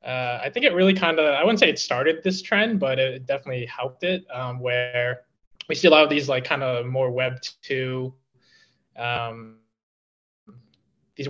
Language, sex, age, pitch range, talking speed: English, male, 20-39, 120-140 Hz, 185 wpm